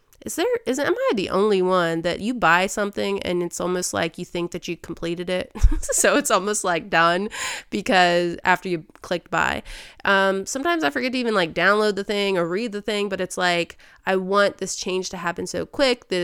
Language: English